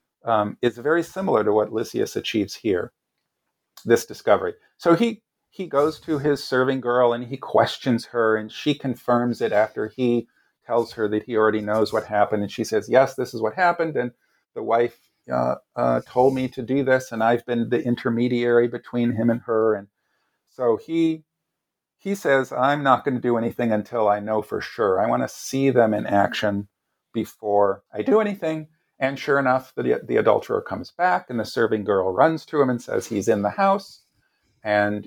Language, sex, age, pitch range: English, male, 50-69, 110-140 Hz